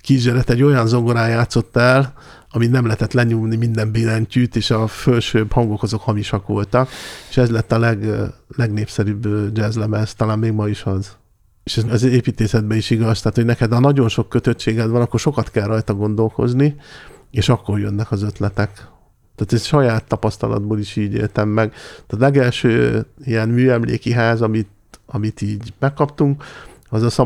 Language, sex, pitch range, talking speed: Hungarian, male, 110-120 Hz, 165 wpm